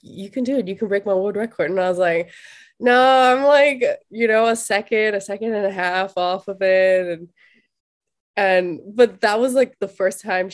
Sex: female